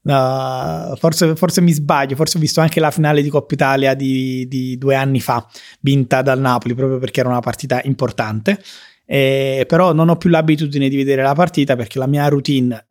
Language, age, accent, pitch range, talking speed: Italian, 20-39, native, 130-155 Hz, 195 wpm